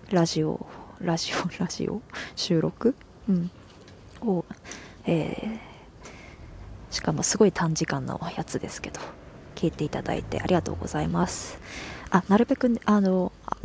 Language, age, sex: Japanese, 20-39, female